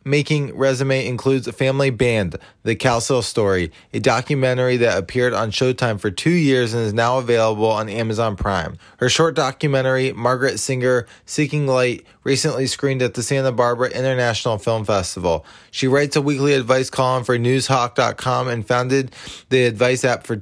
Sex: male